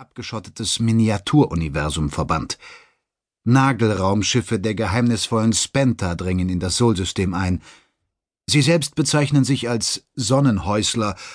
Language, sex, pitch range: German, male, 115-145 Hz